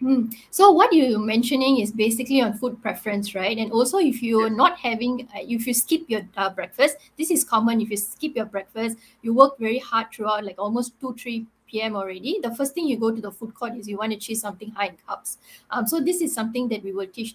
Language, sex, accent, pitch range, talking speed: English, female, Malaysian, 215-260 Hz, 240 wpm